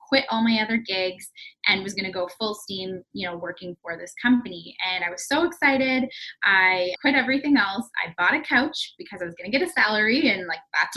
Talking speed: 230 wpm